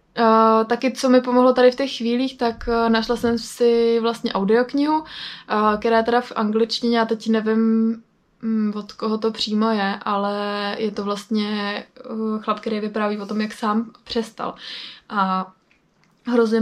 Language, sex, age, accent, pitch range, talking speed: Czech, female, 20-39, native, 215-235 Hz, 165 wpm